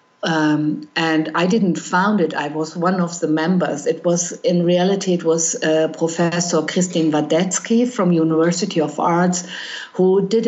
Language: English